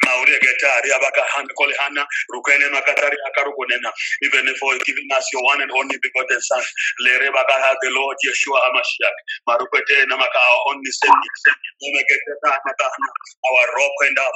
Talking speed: 135 wpm